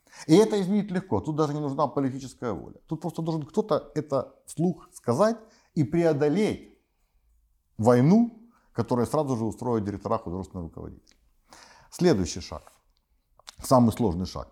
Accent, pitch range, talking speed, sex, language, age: native, 100-145 Hz, 130 wpm, male, Russian, 50-69